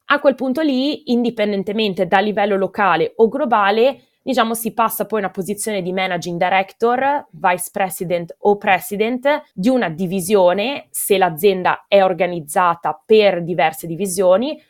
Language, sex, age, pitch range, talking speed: Italian, female, 20-39, 185-230 Hz, 140 wpm